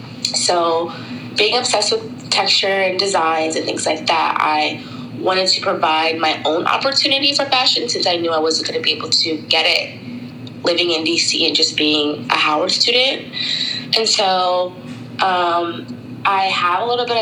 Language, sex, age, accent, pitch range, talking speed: English, female, 20-39, American, 145-175 Hz, 170 wpm